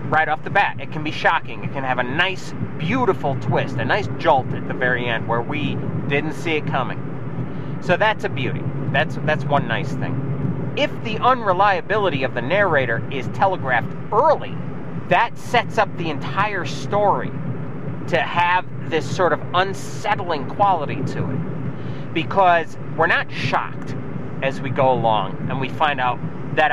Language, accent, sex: English, American, male